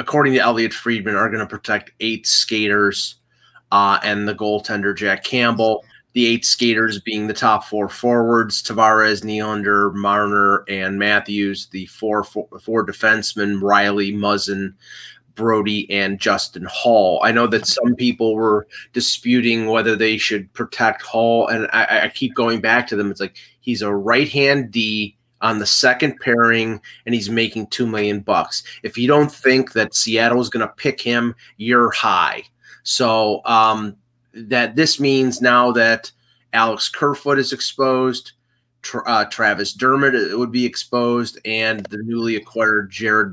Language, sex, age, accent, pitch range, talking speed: English, male, 30-49, American, 105-120 Hz, 155 wpm